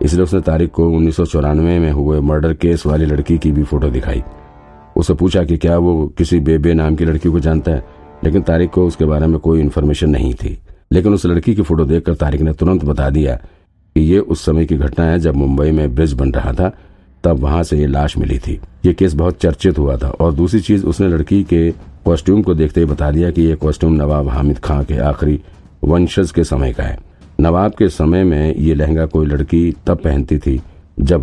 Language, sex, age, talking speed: Hindi, male, 50-69, 215 wpm